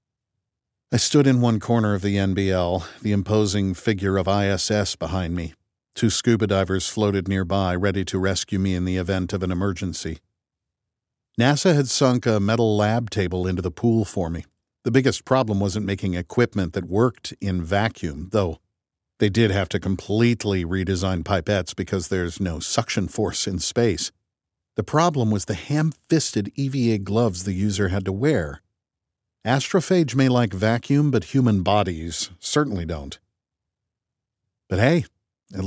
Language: English